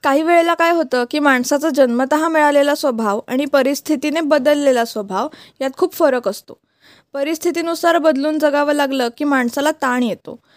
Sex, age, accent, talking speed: female, 20-39, native, 140 wpm